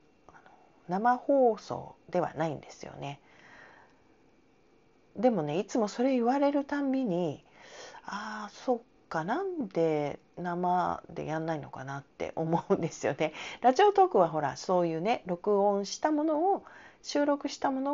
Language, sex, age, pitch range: Japanese, female, 40-59, 150-245 Hz